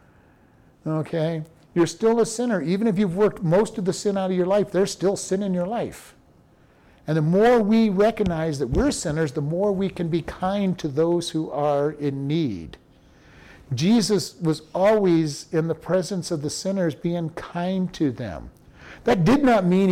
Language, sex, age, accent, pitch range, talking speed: English, male, 50-69, American, 145-190 Hz, 180 wpm